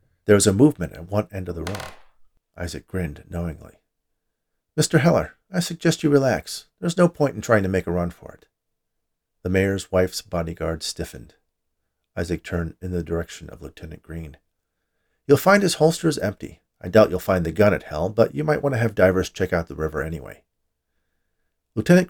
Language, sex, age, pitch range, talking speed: English, male, 50-69, 85-110 Hz, 190 wpm